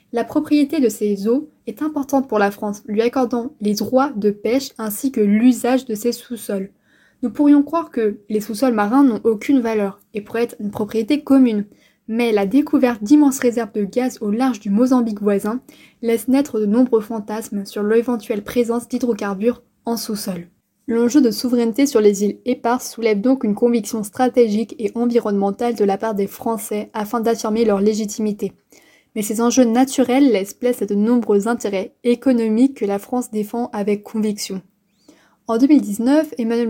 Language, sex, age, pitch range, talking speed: French, female, 20-39, 215-250 Hz, 170 wpm